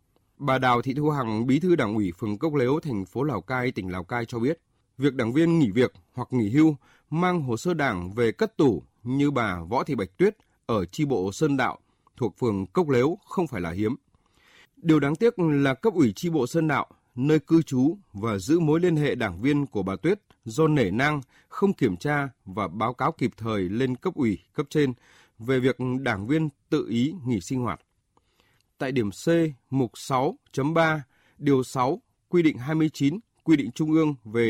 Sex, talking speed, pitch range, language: male, 210 wpm, 115-155 Hz, Vietnamese